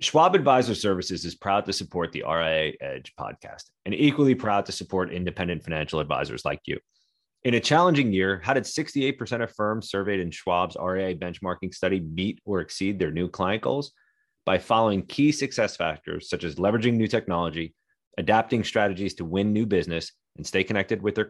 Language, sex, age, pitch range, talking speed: English, male, 30-49, 85-110 Hz, 180 wpm